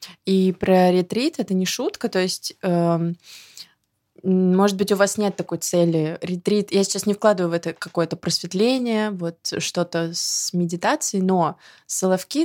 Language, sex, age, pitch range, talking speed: Russian, female, 20-39, 165-195 Hz, 145 wpm